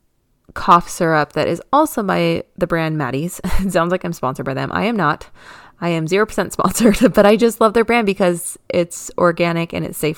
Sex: female